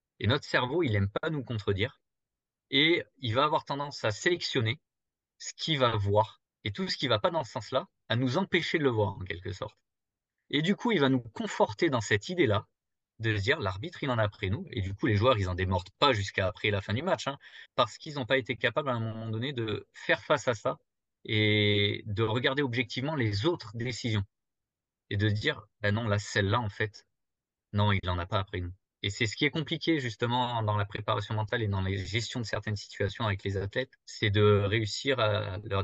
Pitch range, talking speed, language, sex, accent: 105-130 Hz, 230 wpm, French, male, French